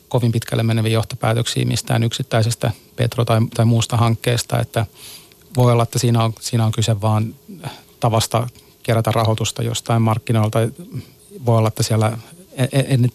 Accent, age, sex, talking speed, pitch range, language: native, 30-49, male, 135 wpm, 110-125 Hz, Finnish